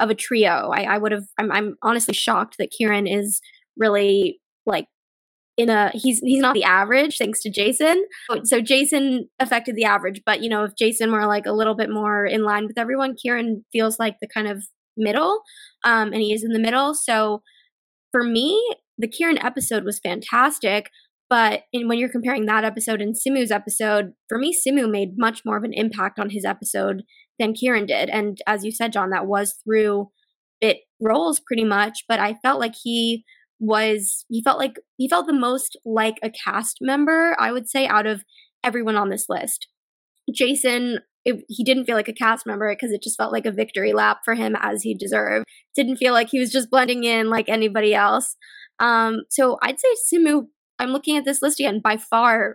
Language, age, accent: English, 10-29, American